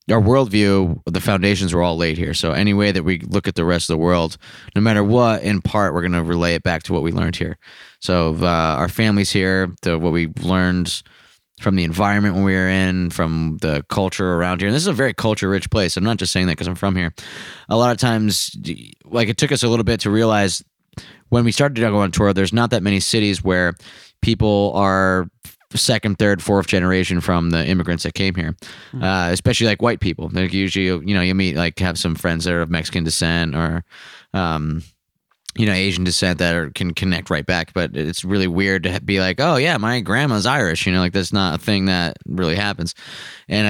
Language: English